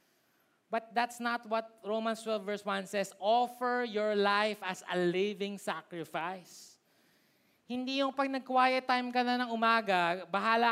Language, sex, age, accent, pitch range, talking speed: Filipino, male, 20-39, native, 200-255 Hz, 145 wpm